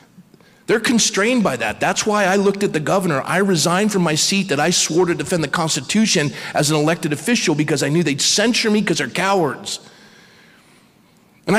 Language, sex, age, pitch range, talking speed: English, male, 40-59, 145-195 Hz, 190 wpm